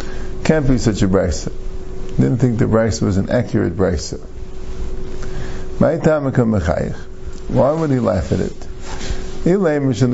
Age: 50-69